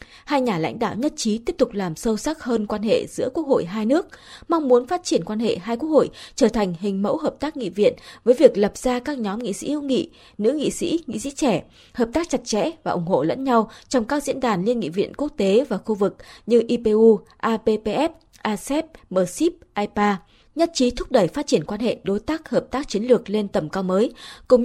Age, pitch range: 20-39, 205-275 Hz